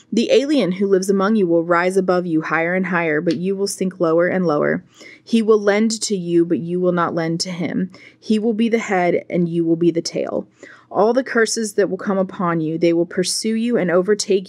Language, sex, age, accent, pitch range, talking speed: English, female, 20-39, American, 170-205 Hz, 235 wpm